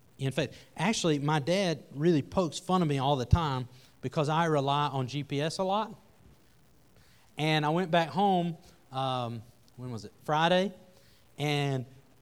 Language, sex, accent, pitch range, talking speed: English, male, American, 125-175 Hz, 150 wpm